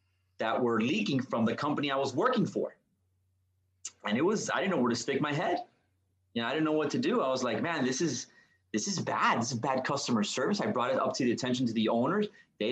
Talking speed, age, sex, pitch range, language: 255 wpm, 30-49, male, 95-125 Hz, English